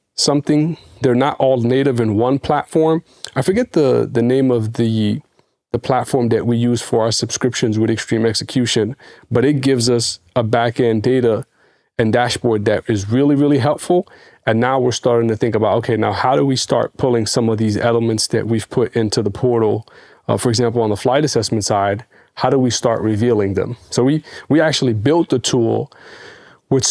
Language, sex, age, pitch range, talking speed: English, male, 30-49, 110-130 Hz, 190 wpm